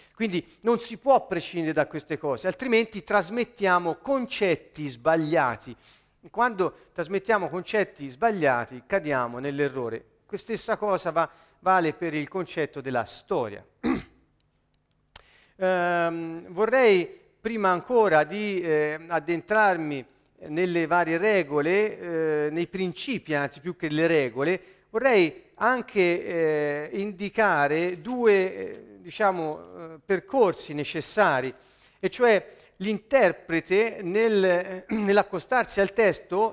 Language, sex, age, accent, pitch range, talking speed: Italian, male, 50-69, native, 160-215 Hz, 105 wpm